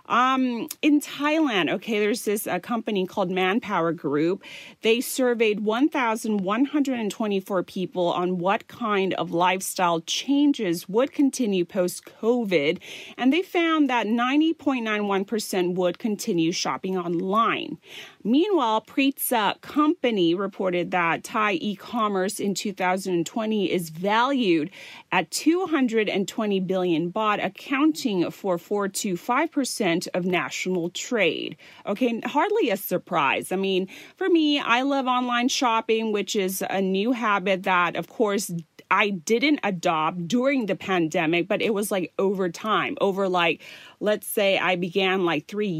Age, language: 30-49, Thai